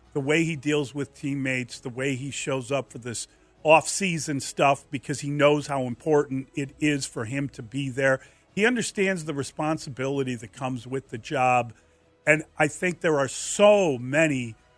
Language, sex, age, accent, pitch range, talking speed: English, male, 40-59, American, 130-160 Hz, 175 wpm